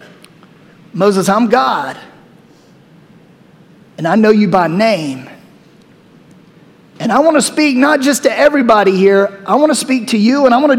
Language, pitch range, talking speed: English, 200-265 Hz, 160 wpm